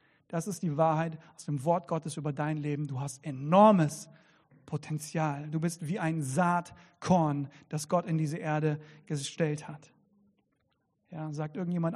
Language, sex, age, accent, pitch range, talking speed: German, male, 40-59, German, 155-185 Hz, 150 wpm